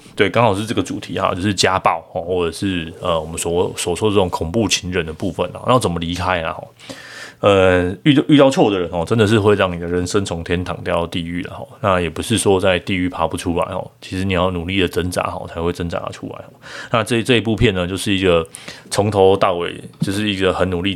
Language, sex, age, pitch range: Chinese, male, 20-39, 90-105 Hz